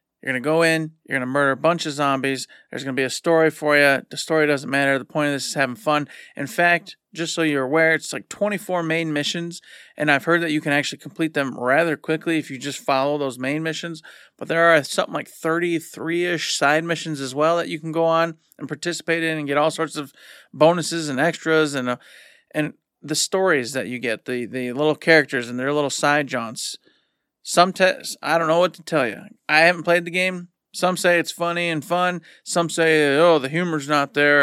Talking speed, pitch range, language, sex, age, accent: 230 wpm, 145-170 Hz, English, male, 40-59, American